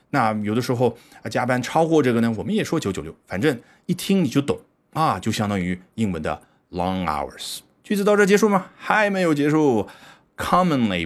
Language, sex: Chinese, male